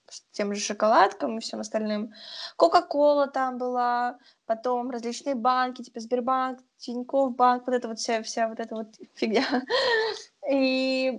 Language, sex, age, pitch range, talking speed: Russian, female, 20-39, 220-275 Hz, 145 wpm